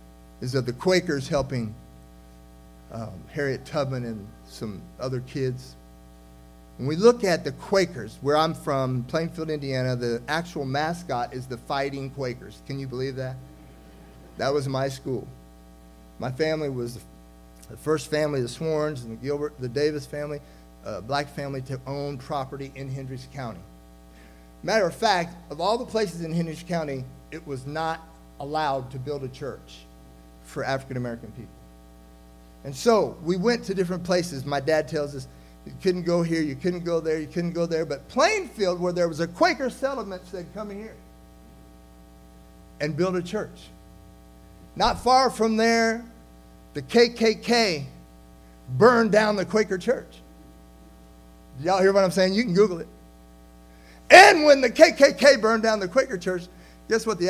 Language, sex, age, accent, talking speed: English, male, 50-69, American, 160 wpm